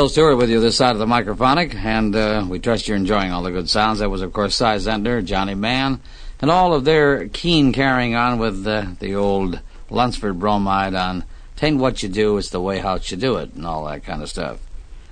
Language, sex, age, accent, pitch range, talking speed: English, male, 50-69, American, 95-125 Hz, 225 wpm